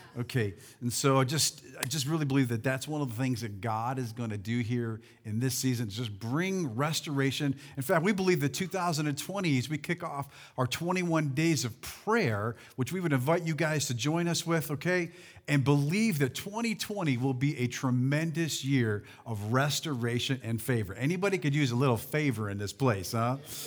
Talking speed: 190 wpm